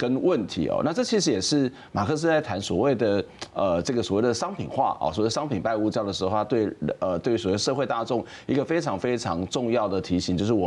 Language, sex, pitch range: Chinese, male, 105-140 Hz